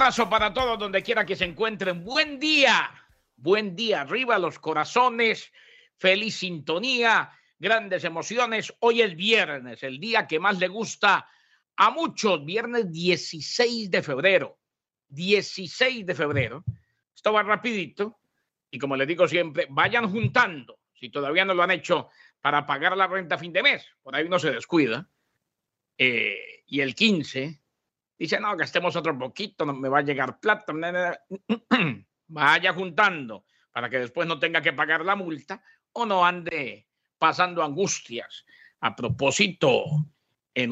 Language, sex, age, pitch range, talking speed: Spanish, male, 50-69, 155-215 Hz, 150 wpm